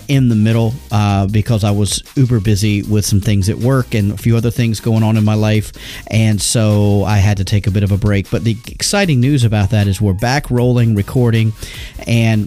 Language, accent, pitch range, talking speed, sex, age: English, American, 105-125 Hz, 225 wpm, male, 40-59